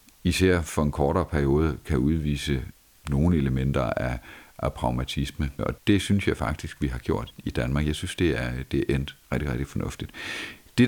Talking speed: 180 wpm